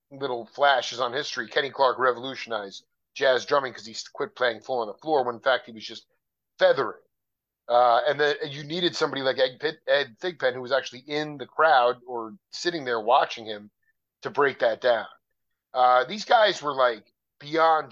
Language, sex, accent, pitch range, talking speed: English, male, American, 115-145 Hz, 185 wpm